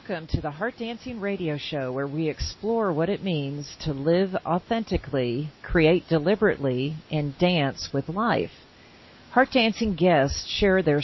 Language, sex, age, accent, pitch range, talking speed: English, female, 40-59, American, 150-190 Hz, 145 wpm